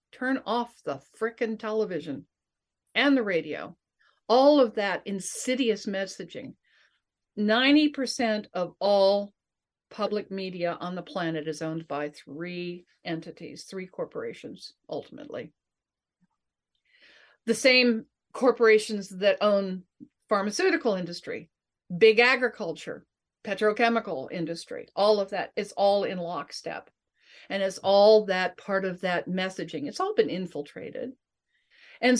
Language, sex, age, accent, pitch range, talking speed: English, female, 50-69, American, 185-245 Hz, 110 wpm